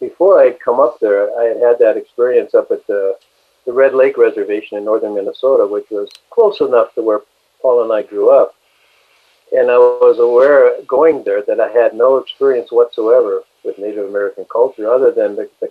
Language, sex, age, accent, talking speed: English, male, 50-69, American, 200 wpm